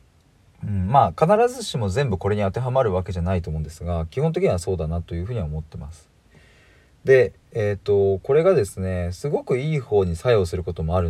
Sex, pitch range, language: male, 85-115 Hz, Japanese